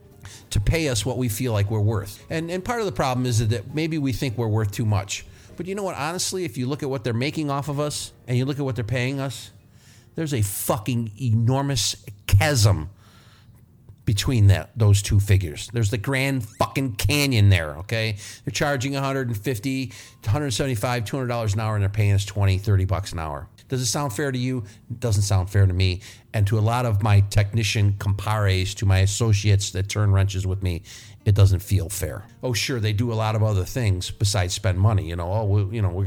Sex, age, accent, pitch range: male, 50-69, American, 100-130 Hz